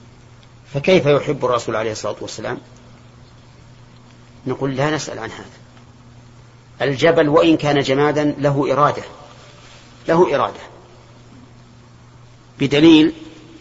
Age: 40-59